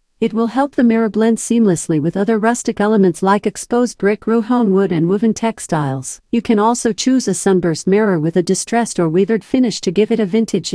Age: 50-69